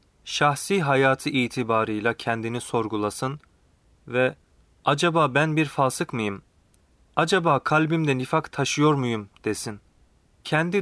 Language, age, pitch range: Turkish, 30-49, 110-150 Hz